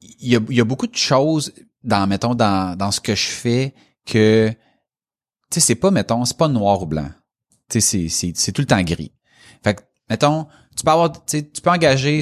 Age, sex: 30-49, male